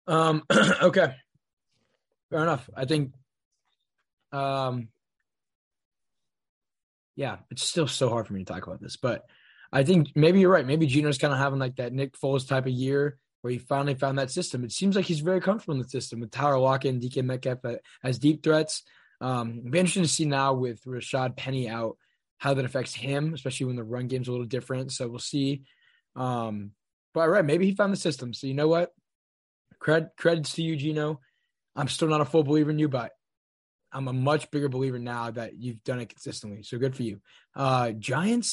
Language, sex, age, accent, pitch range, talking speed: English, male, 20-39, American, 125-155 Hz, 200 wpm